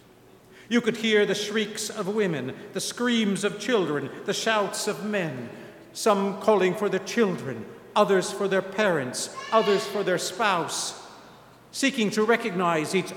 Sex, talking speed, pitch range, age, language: male, 145 wpm, 145-195 Hz, 50-69, English